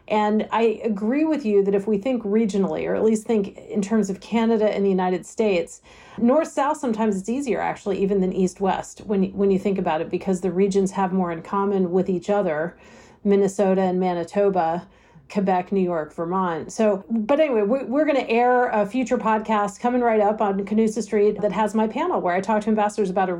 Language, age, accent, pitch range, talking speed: English, 40-59, American, 200-235 Hz, 210 wpm